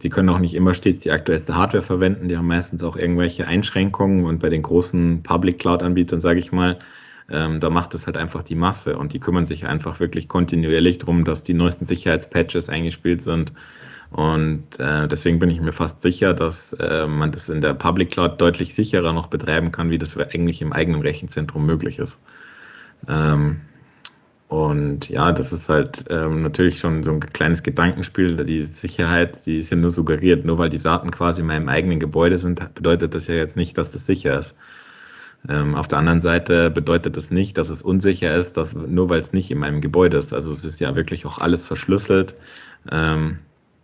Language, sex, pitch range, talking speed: German, male, 80-90 Hz, 195 wpm